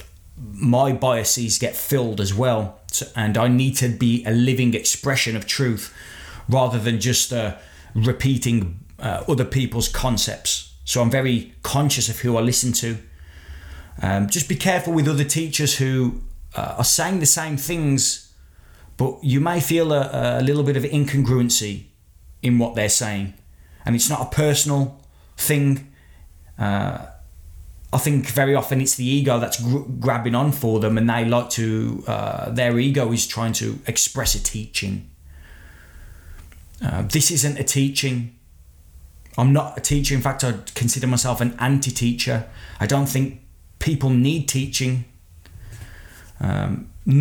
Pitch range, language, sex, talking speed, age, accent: 95-130 Hz, English, male, 150 wpm, 20-39, British